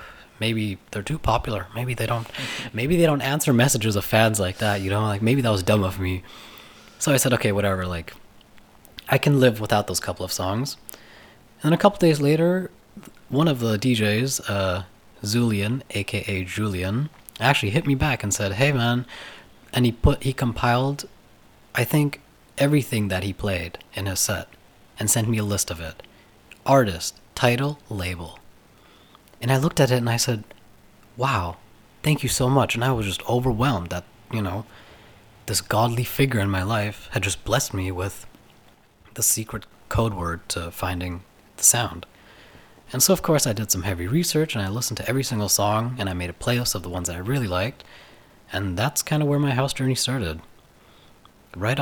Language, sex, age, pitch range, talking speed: English, male, 20-39, 100-130 Hz, 190 wpm